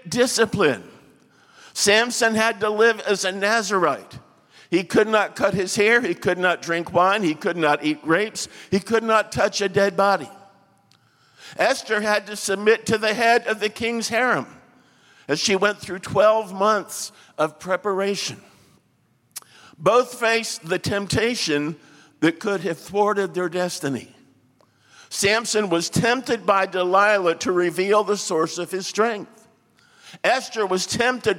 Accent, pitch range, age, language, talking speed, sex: American, 170-220 Hz, 50-69, English, 145 wpm, male